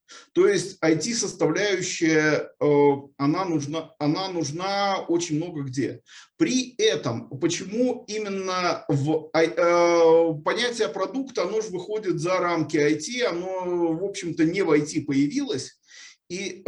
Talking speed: 110 wpm